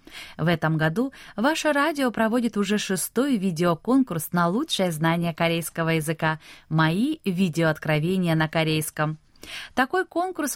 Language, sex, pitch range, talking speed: Russian, female, 165-255 Hz, 115 wpm